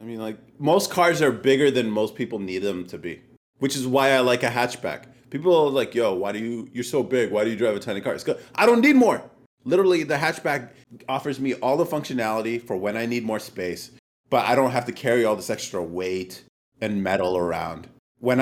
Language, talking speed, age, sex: English, 235 wpm, 30-49, male